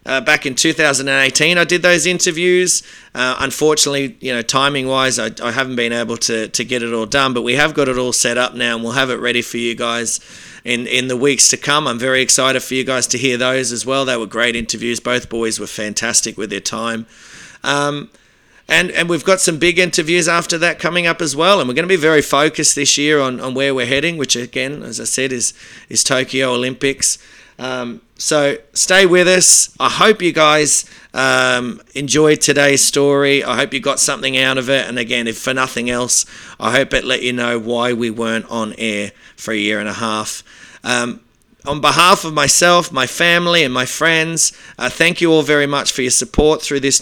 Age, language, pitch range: 30-49, English, 120-150 Hz